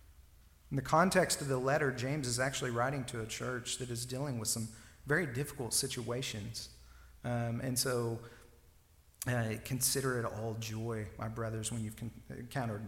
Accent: American